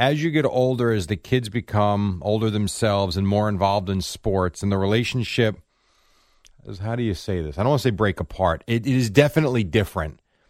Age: 40-59